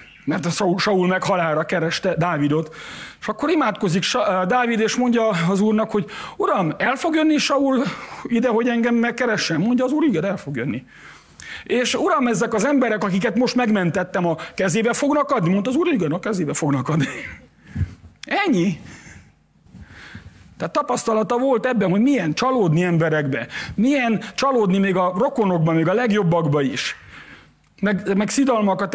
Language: Hungarian